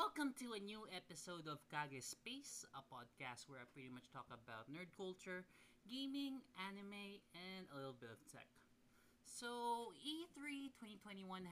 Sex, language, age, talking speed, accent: male, Filipino, 20-39, 150 wpm, native